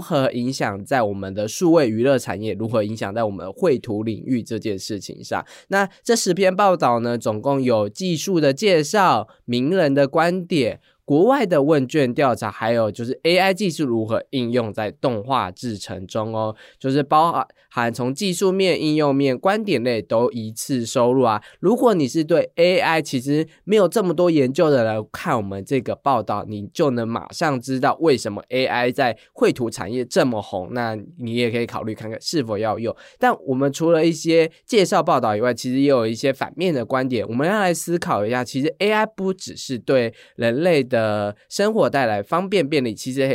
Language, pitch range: Chinese, 115-155 Hz